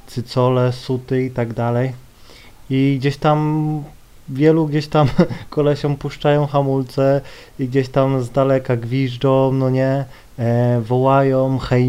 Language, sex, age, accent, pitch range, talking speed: Polish, male, 20-39, native, 125-165 Hz, 130 wpm